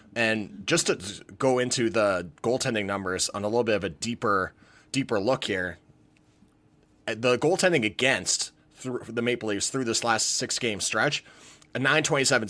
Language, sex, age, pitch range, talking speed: English, male, 30-49, 115-140 Hz, 150 wpm